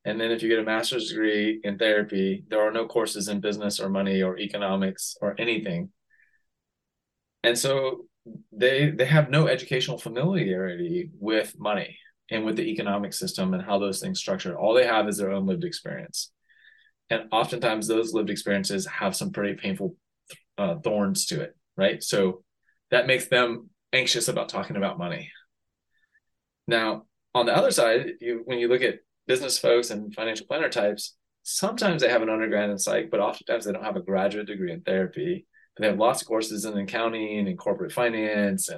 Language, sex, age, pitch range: English, male, 20-39, 105-170 Hz